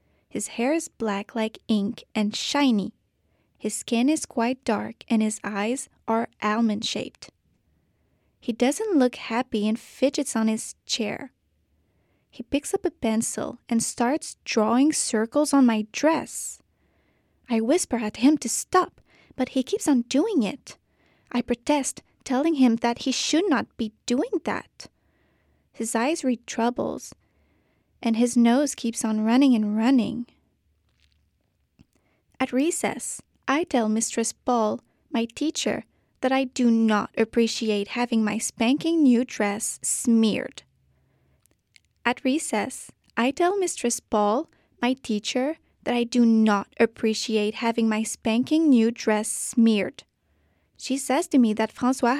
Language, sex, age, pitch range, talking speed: French, female, 20-39, 215-260 Hz, 135 wpm